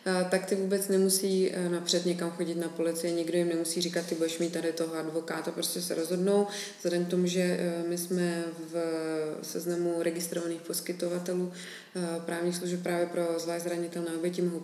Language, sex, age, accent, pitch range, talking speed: Czech, female, 20-39, native, 165-180 Hz, 160 wpm